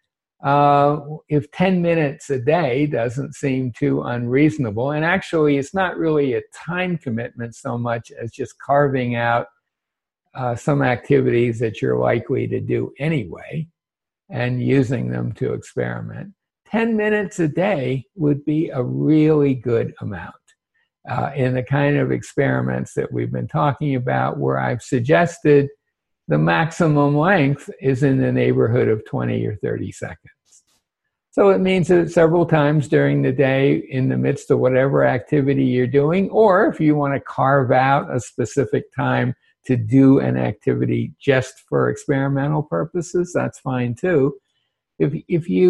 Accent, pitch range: American, 125-160 Hz